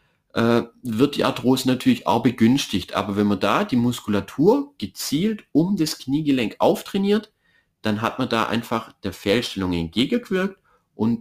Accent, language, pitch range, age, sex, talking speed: German, German, 100-130 Hz, 30-49, male, 140 wpm